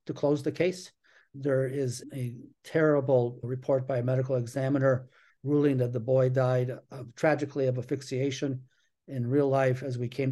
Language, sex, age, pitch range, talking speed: English, male, 60-79, 125-140 Hz, 165 wpm